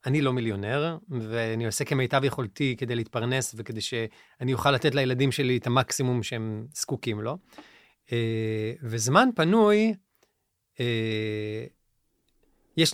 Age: 30-49